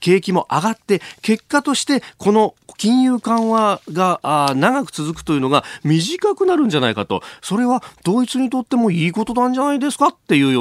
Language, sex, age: Japanese, male, 40-59